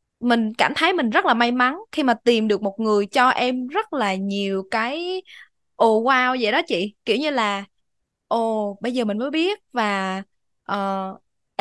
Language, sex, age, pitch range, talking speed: Vietnamese, female, 20-39, 205-275 Hz, 190 wpm